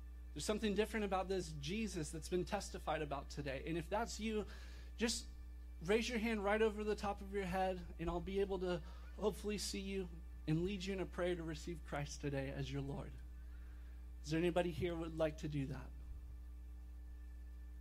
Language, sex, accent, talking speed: English, male, American, 190 wpm